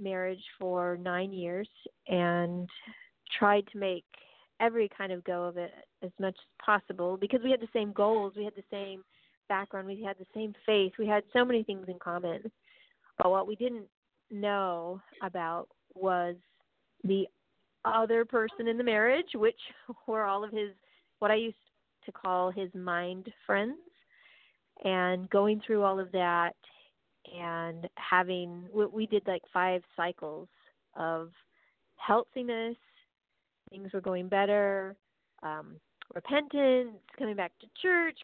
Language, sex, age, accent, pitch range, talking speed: English, female, 40-59, American, 185-235 Hz, 145 wpm